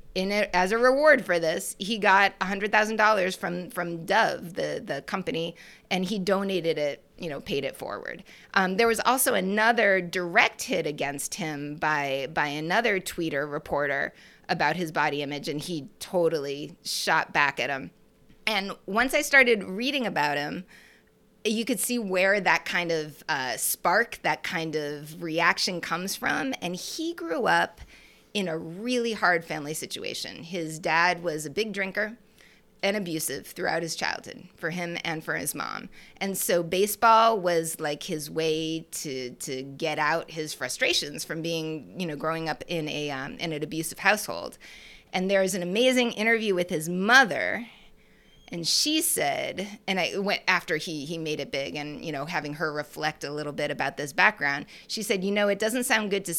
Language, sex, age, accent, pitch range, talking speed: English, female, 30-49, American, 155-210 Hz, 180 wpm